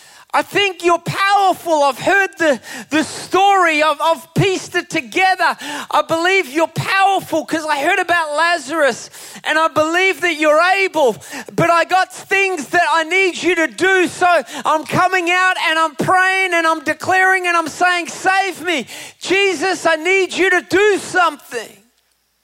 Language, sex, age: English, male, 30-49